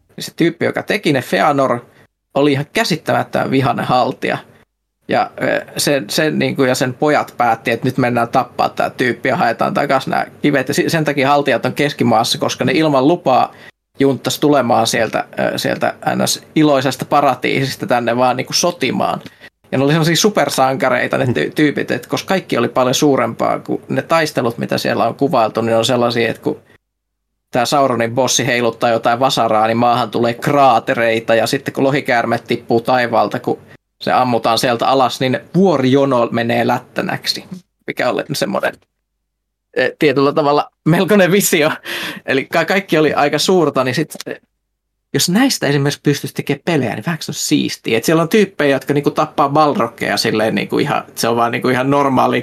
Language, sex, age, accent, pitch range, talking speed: Finnish, male, 20-39, native, 120-155 Hz, 160 wpm